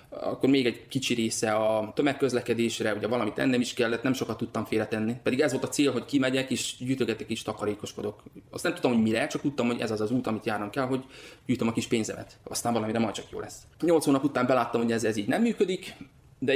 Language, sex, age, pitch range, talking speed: Hungarian, male, 20-39, 110-130 Hz, 230 wpm